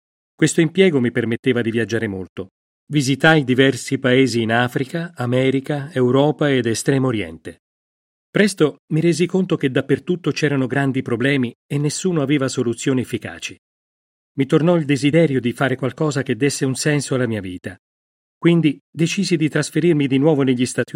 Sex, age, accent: male, 40-59, native